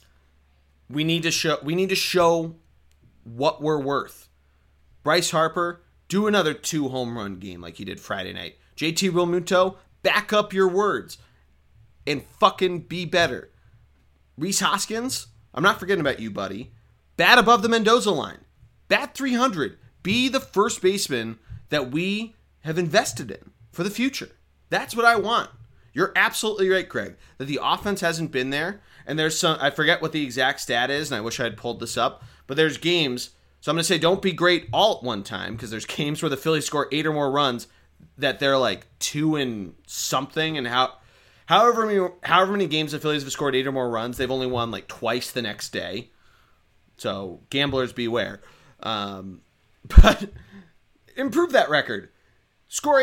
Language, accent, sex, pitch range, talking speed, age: English, American, male, 120-195 Hz, 175 wpm, 30-49